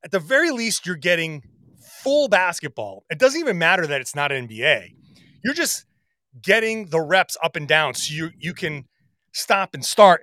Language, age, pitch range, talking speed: English, 30-49, 145-210 Hz, 190 wpm